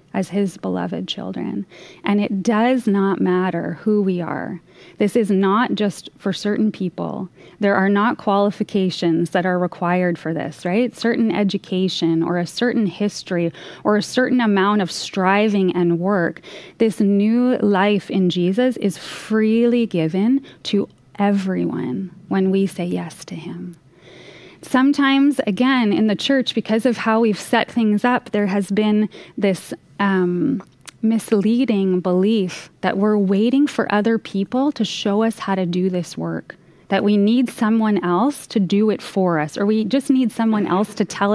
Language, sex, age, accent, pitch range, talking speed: English, female, 20-39, American, 180-225 Hz, 160 wpm